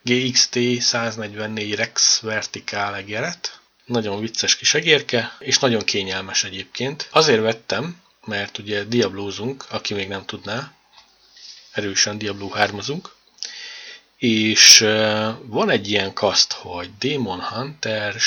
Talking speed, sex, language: 105 wpm, male, Hungarian